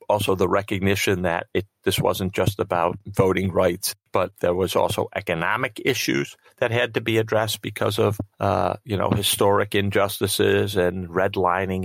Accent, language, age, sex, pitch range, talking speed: American, English, 40-59, male, 90-105 Hz, 155 wpm